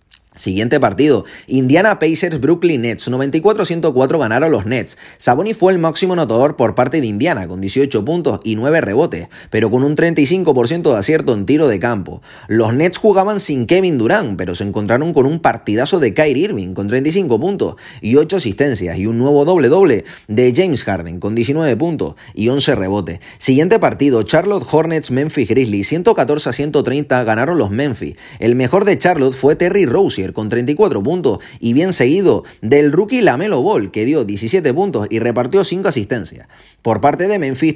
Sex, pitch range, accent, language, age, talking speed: male, 115-170 Hz, Spanish, Spanish, 30-49, 170 wpm